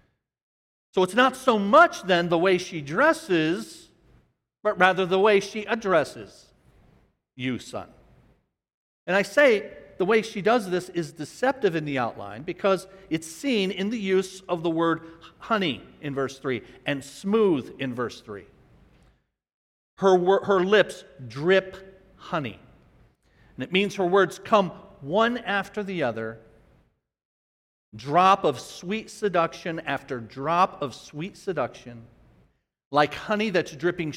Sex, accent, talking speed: male, American, 135 wpm